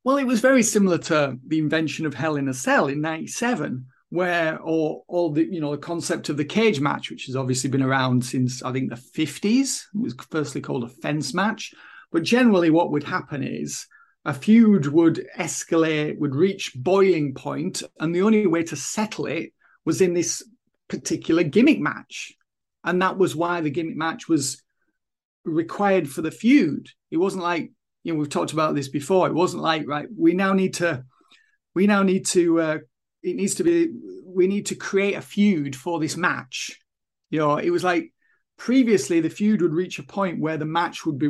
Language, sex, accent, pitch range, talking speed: English, male, British, 150-195 Hz, 200 wpm